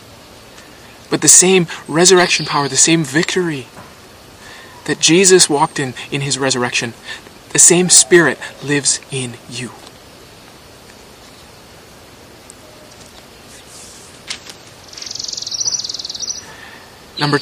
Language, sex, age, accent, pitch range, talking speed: English, male, 20-39, American, 130-170 Hz, 75 wpm